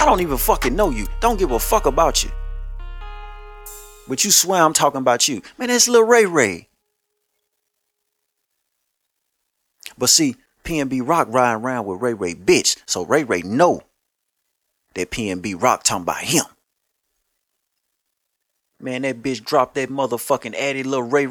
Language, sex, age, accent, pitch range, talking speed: English, male, 30-49, American, 135-190 Hz, 150 wpm